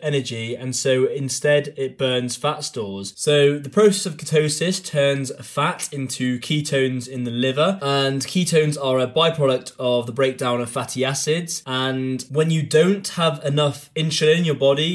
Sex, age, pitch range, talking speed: male, 20-39, 125-145 Hz, 165 wpm